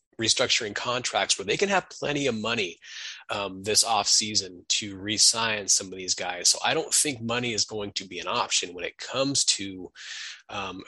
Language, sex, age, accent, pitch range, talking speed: English, male, 20-39, American, 95-110 Hz, 195 wpm